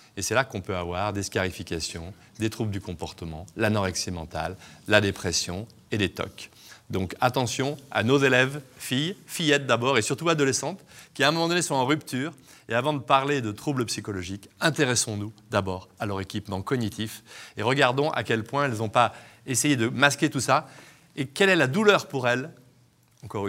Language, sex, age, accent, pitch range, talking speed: French, male, 30-49, French, 95-135 Hz, 185 wpm